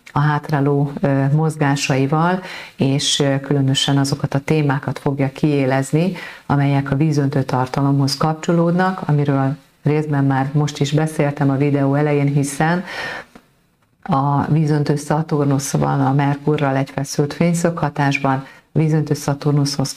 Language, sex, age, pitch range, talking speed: Hungarian, female, 40-59, 135-150 Hz, 105 wpm